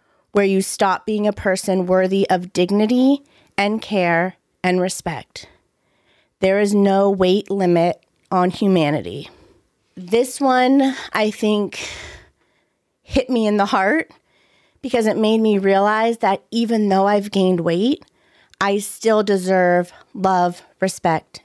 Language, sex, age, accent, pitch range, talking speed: English, female, 30-49, American, 185-225 Hz, 125 wpm